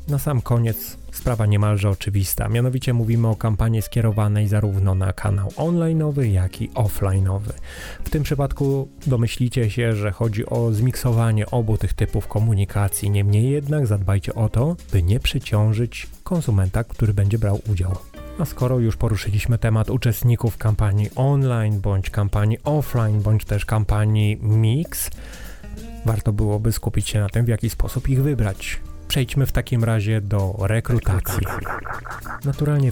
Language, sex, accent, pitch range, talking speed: Polish, male, native, 105-130 Hz, 140 wpm